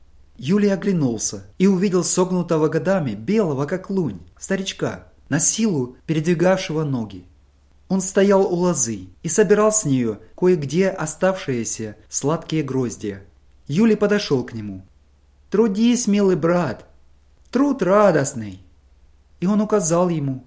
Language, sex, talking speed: English, male, 115 wpm